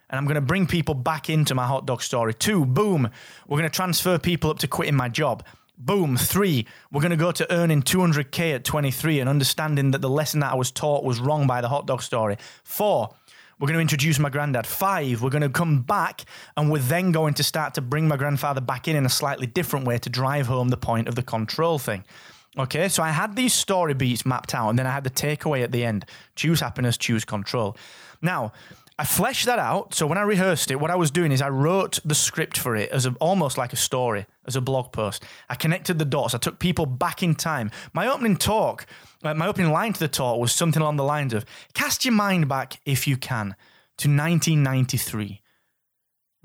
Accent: British